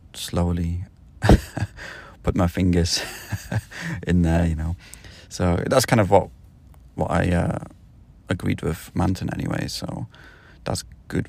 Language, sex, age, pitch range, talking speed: English, male, 30-49, 85-100 Hz, 120 wpm